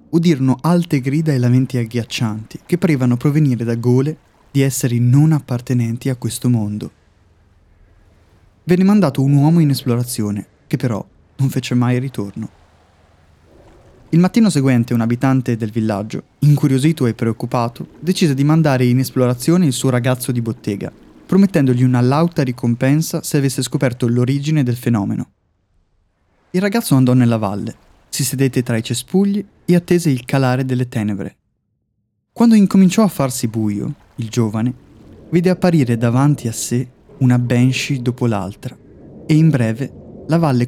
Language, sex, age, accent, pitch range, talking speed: Italian, male, 20-39, native, 115-145 Hz, 145 wpm